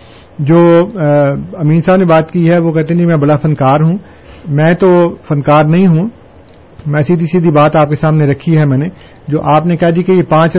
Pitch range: 145-175 Hz